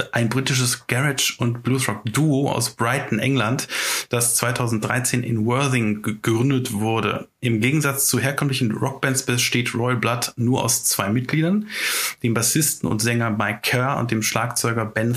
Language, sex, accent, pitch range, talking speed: German, male, German, 120-140 Hz, 145 wpm